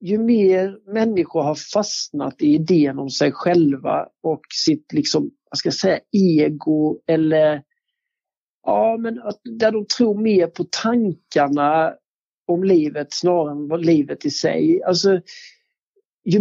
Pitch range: 160-220 Hz